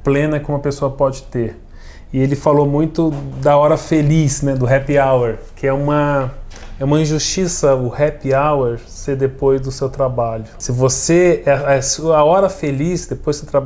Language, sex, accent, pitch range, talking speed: Portuguese, male, Brazilian, 130-160 Hz, 180 wpm